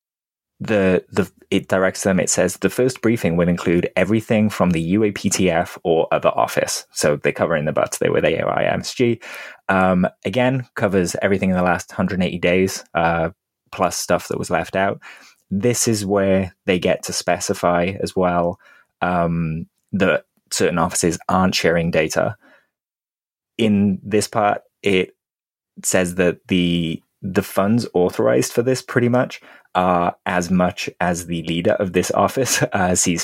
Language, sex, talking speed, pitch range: English, male, 155 wpm, 85-105 Hz